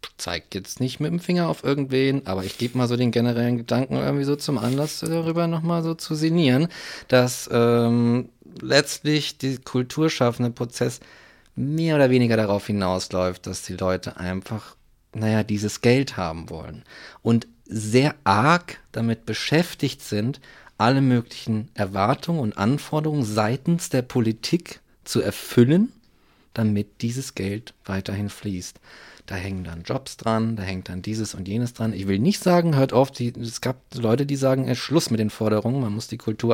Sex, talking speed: male, 165 wpm